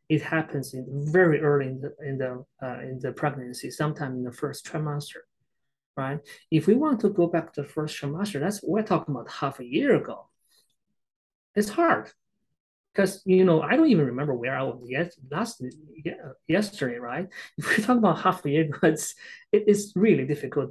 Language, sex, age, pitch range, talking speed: English, male, 30-49, 140-185 Hz, 195 wpm